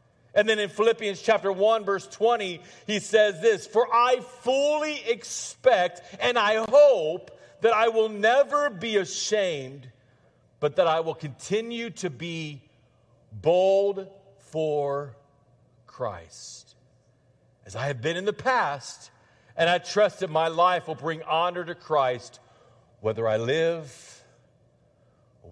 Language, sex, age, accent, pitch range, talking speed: English, male, 40-59, American, 130-210 Hz, 130 wpm